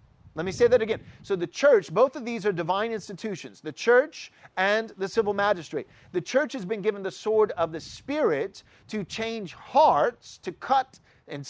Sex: male